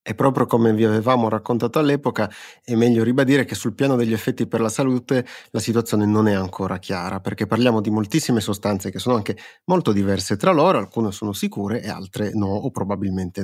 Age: 30-49